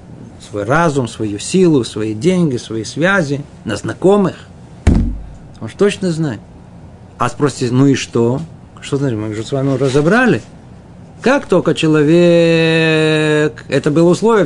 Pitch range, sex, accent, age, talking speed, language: 135-185 Hz, male, native, 50-69, 135 wpm, Russian